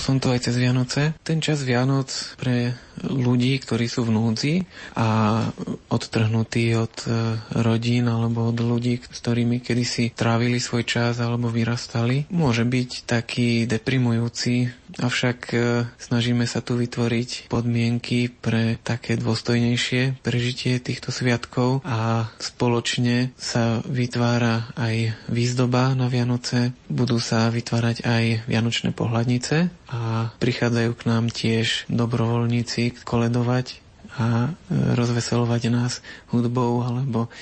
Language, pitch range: Slovak, 115-125 Hz